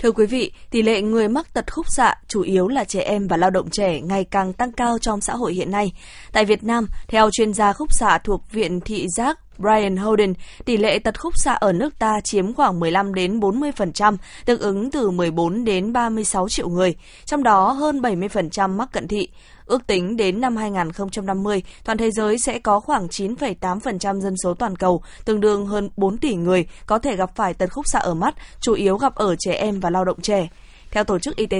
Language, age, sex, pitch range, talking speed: Vietnamese, 20-39, female, 190-235 Hz, 220 wpm